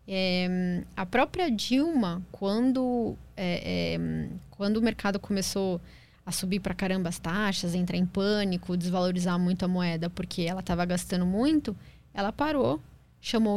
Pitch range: 180-235 Hz